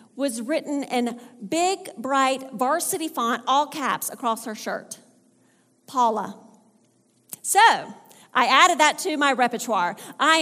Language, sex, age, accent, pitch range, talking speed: English, female, 40-59, American, 230-315 Hz, 120 wpm